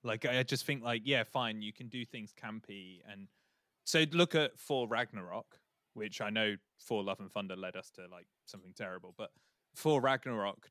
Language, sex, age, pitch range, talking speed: English, male, 20-39, 105-140 Hz, 190 wpm